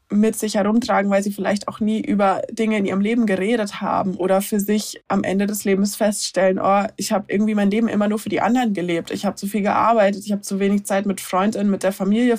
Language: German